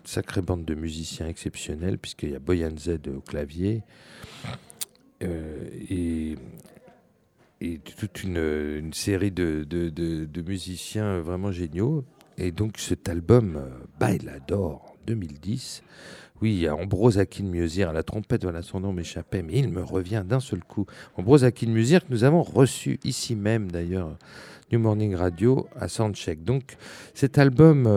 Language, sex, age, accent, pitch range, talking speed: French, male, 50-69, French, 85-120 Hz, 150 wpm